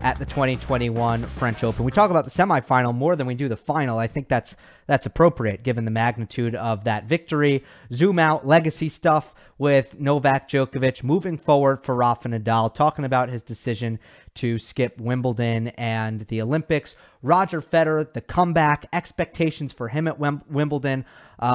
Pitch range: 120-155 Hz